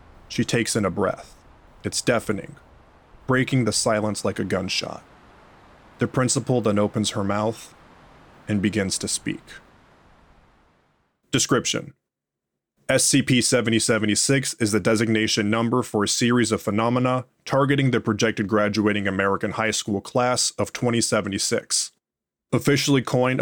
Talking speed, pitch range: 120 wpm, 105-125 Hz